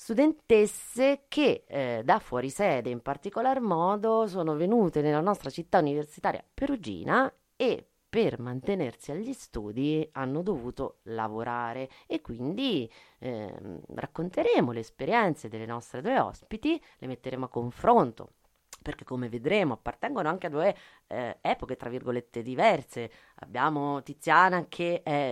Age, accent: 30-49, native